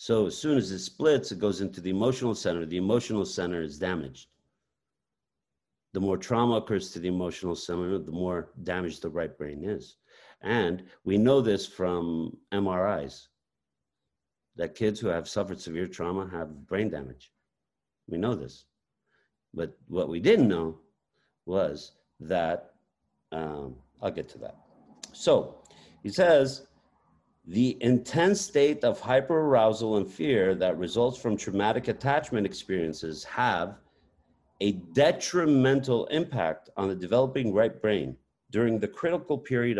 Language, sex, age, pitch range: English, male, 50-69, 85-120 Hz